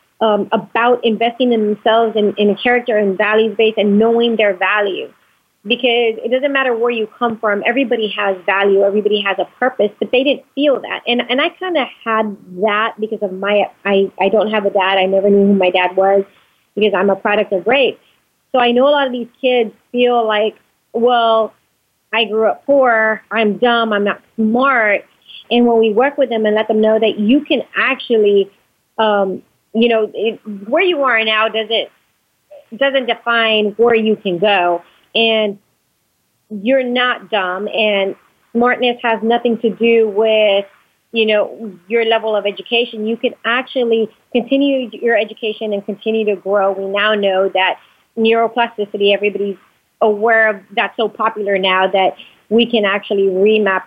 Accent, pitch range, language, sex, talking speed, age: American, 205-235 Hz, English, female, 175 wpm, 30-49